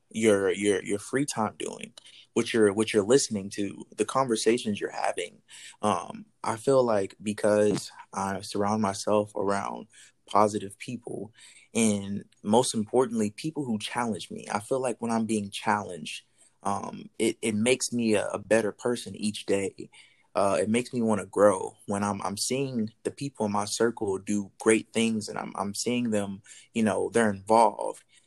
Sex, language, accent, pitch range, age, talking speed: male, English, American, 100-115 Hz, 20-39, 170 wpm